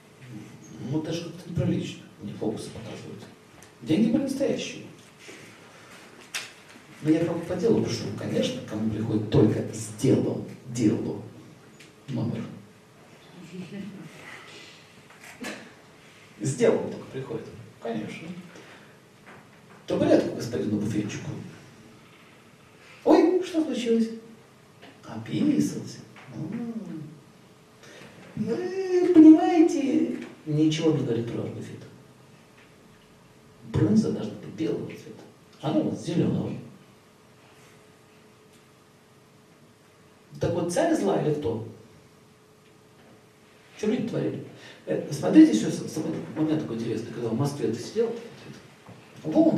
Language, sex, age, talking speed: Russian, male, 50-69, 85 wpm